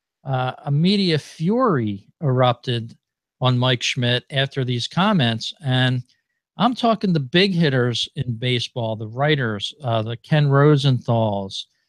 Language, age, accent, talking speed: English, 50-69, American, 125 wpm